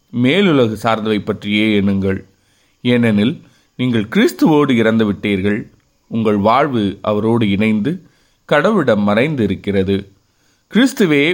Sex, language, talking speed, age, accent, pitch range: male, Tamil, 80 wpm, 30-49, native, 105-130 Hz